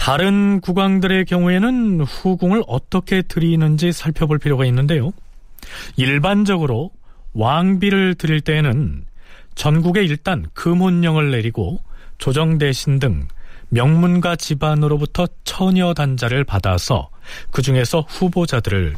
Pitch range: 120-185 Hz